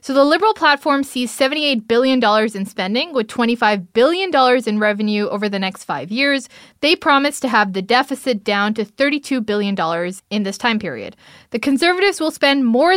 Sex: female